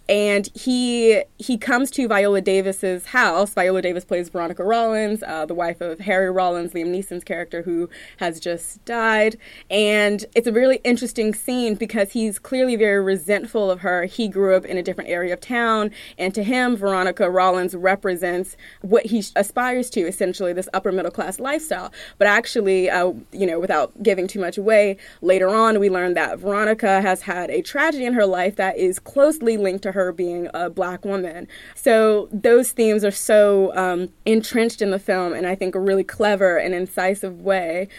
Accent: American